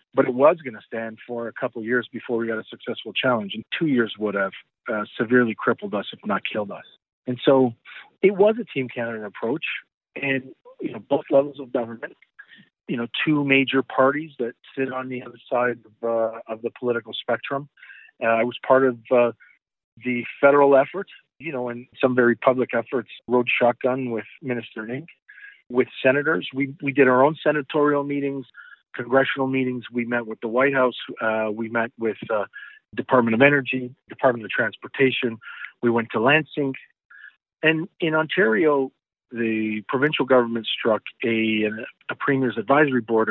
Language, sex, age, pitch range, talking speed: English, male, 40-59, 115-140 Hz, 175 wpm